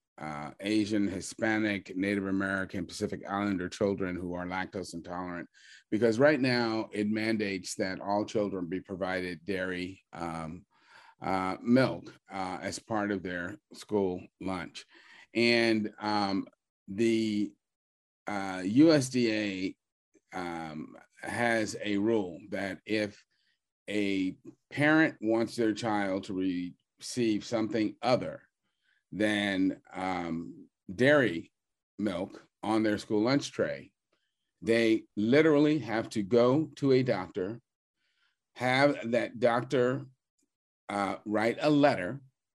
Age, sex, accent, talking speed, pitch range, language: 40-59, male, American, 110 wpm, 95-120 Hz, English